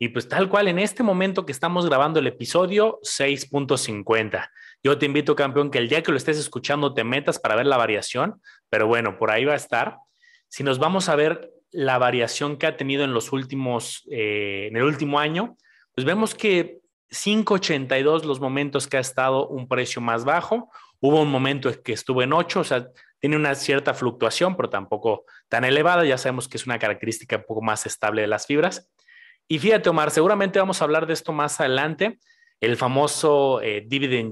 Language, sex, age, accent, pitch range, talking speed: Spanish, male, 30-49, Mexican, 125-175 Hz, 200 wpm